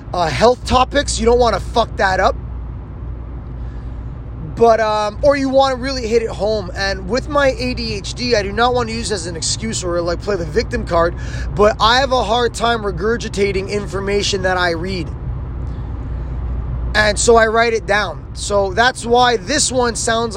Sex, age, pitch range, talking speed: male, 20-39, 190-250 Hz, 185 wpm